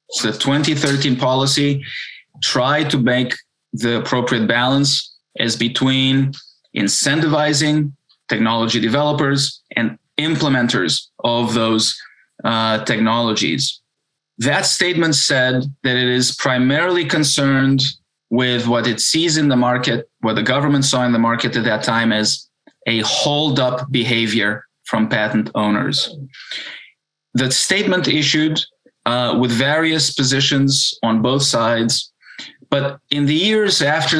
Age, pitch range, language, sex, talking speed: 20-39, 120-145 Hz, English, male, 120 wpm